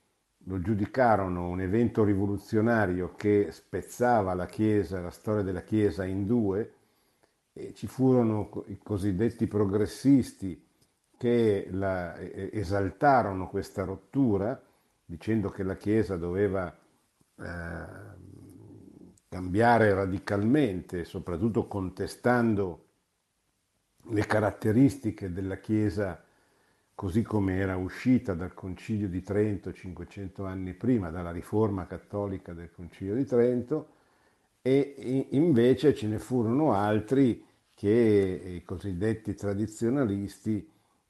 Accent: native